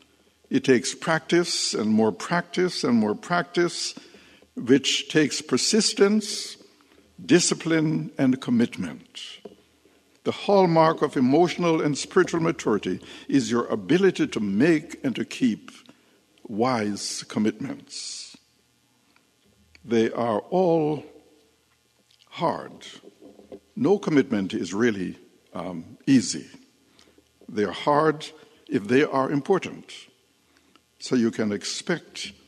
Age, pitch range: 60-79, 120-180 Hz